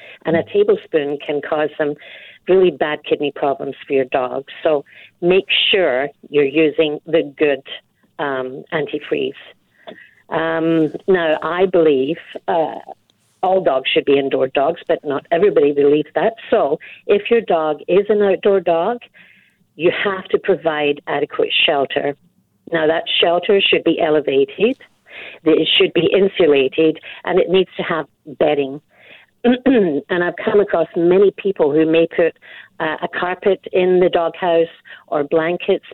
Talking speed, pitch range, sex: 140 wpm, 150-185 Hz, female